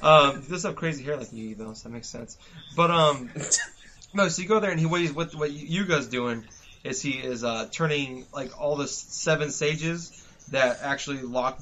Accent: American